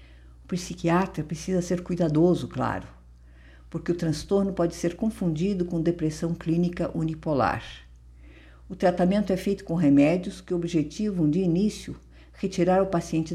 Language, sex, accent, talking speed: Portuguese, female, Brazilian, 125 wpm